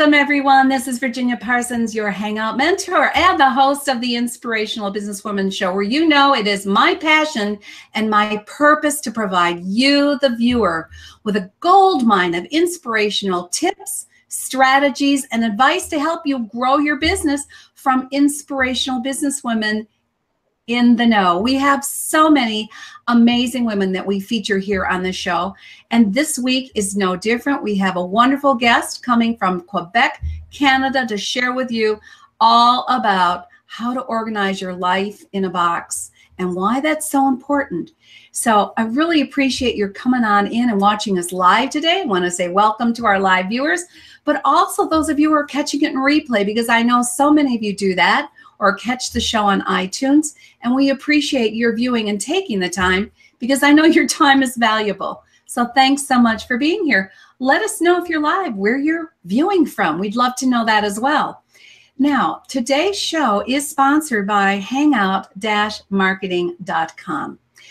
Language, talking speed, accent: English, 170 wpm, American